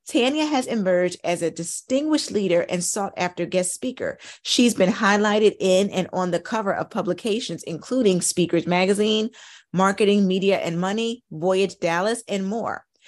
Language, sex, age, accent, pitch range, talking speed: English, female, 30-49, American, 175-225 Hz, 140 wpm